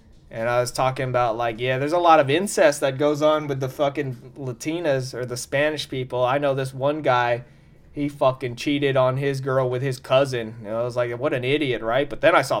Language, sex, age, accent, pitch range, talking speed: English, male, 20-39, American, 130-155 Hz, 235 wpm